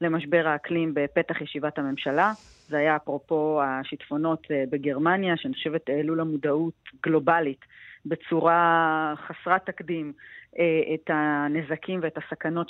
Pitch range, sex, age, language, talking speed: 155-185 Hz, female, 30-49, Hebrew, 105 wpm